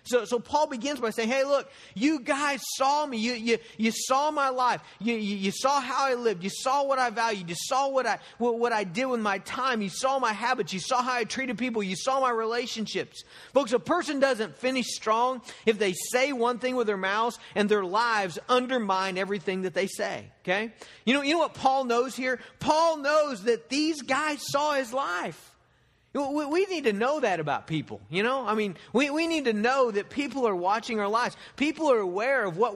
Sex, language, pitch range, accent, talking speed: male, English, 210-270 Hz, American, 220 wpm